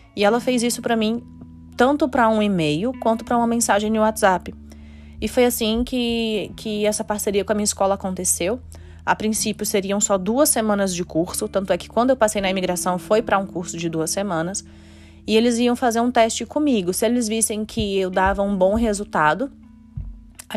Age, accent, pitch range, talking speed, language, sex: 20-39, Brazilian, 170-205 Hz, 200 wpm, Portuguese, female